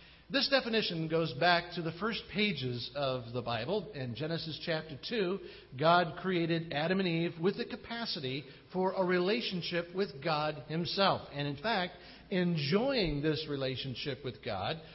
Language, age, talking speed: English, 50-69, 150 wpm